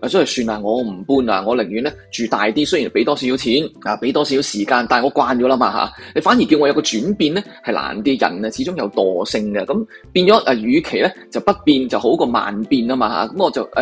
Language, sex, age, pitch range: Chinese, male, 20-39, 120-195 Hz